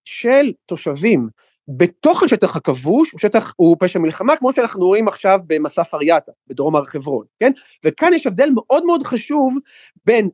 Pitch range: 165-265 Hz